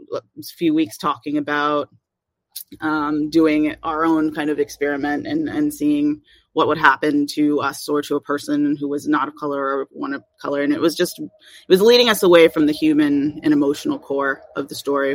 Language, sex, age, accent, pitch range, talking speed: English, female, 30-49, American, 150-230 Hz, 200 wpm